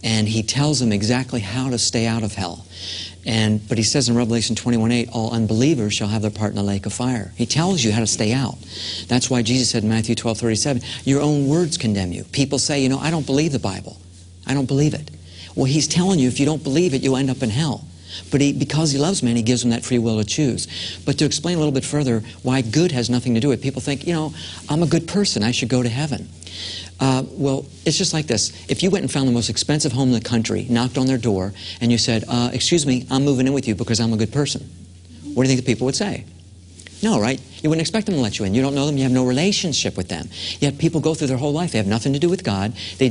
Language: English